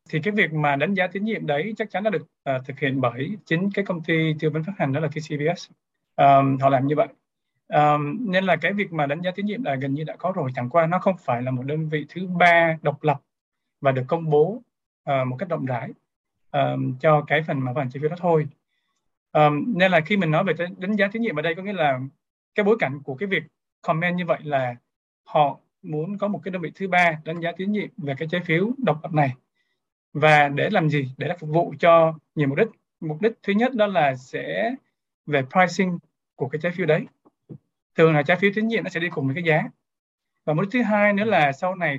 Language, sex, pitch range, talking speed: Vietnamese, male, 145-195 Hz, 250 wpm